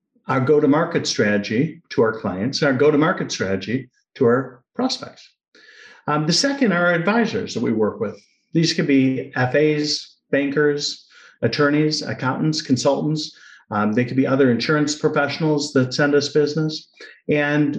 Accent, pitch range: American, 130-170 Hz